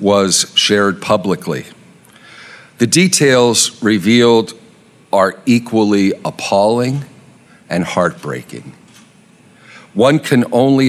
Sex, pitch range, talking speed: male, 100-130 Hz, 75 wpm